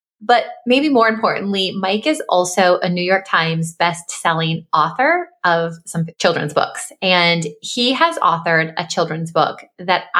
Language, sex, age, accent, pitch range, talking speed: English, female, 20-39, American, 170-220 Hz, 145 wpm